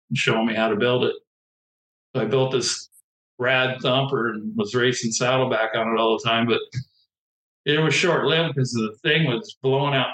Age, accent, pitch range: 50-69, American, 115-135 Hz